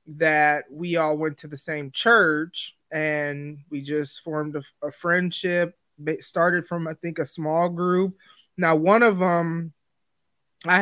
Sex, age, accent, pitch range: male, 20-39, American, 155-180 Hz